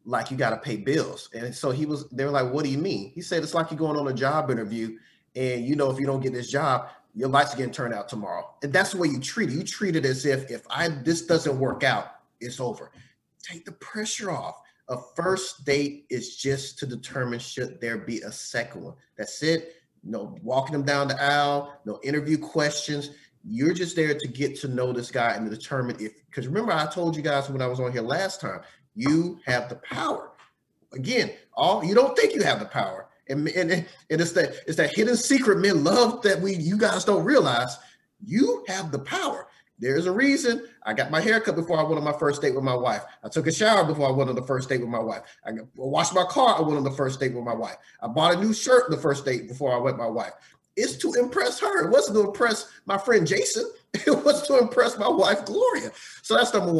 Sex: male